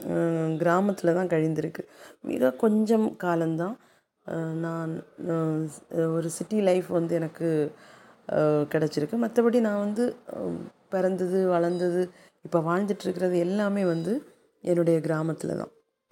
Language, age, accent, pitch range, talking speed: Tamil, 30-49, native, 165-195 Hz, 95 wpm